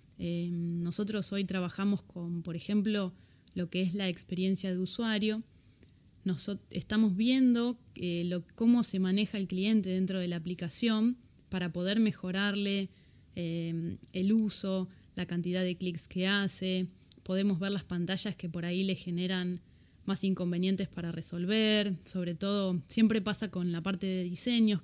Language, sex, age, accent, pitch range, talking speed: Spanish, female, 20-39, Argentinian, 180-205 Hz, 145 wpm